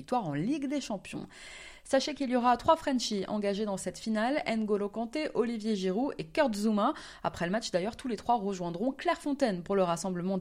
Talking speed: 210 wpm